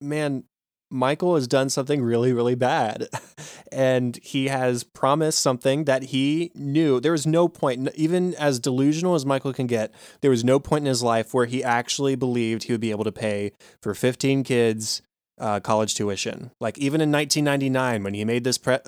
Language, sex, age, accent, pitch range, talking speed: English, male, 20-39, American, 115-135 Hz, 190 wpm